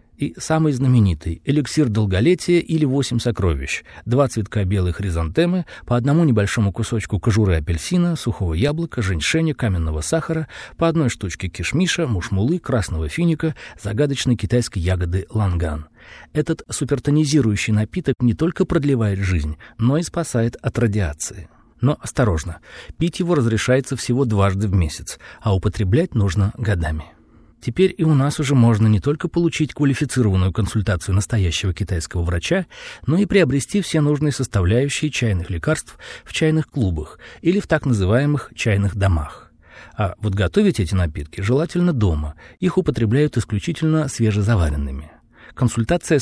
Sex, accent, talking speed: male, native, 130 wpm